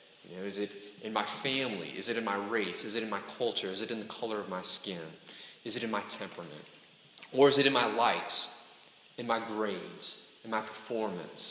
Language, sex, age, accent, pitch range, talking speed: English, male, 30-49, American, 105-130 Hz, 210 wpm